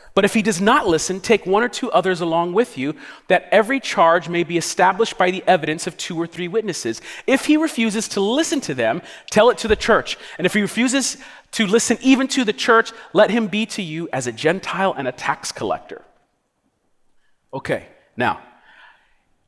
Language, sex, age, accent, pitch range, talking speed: English, male, 30-49, American, 140-200 Hz, 195 wpm